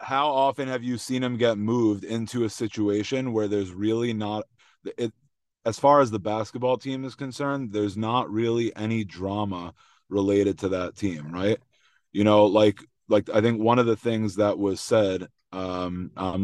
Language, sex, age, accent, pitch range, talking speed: English, male, 30-49, American, 100-115 Hz, 180 wpm